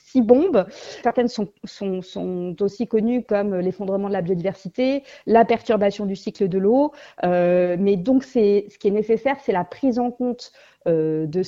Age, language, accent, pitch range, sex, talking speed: 40-59, French, French, 190-250 Hz, female, 180 wpm